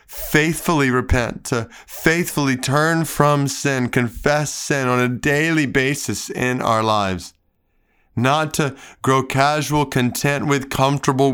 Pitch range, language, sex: 110-140 Hz, English, male